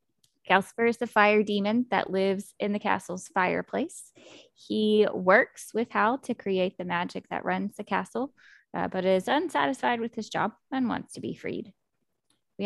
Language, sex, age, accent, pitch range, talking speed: English, female, 20-39, American, 185-220 Hz, 170 wpm